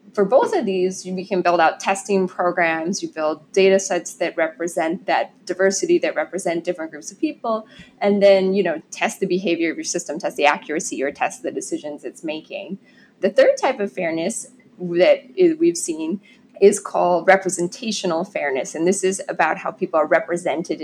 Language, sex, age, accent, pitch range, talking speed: English, female, 20-39, American, 165-205 Hz, 180 wpm